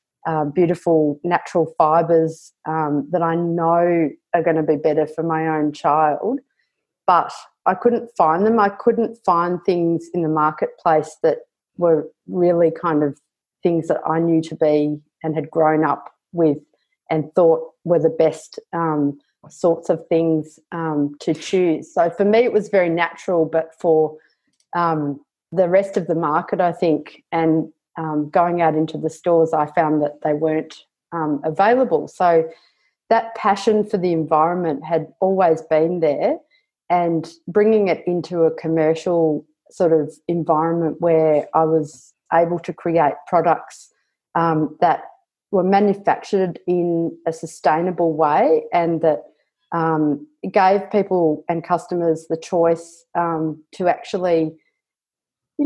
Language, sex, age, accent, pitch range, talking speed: English, female, 30-49, Australian, 155-180 Hz, 145 wpm